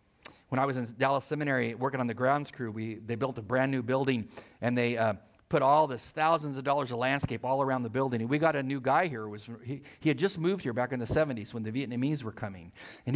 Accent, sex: American, male